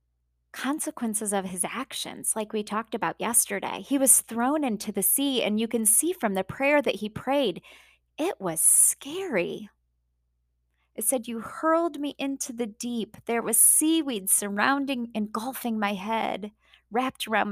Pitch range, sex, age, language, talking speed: 165-270 Hz, female, 20-39, English, 155 wpm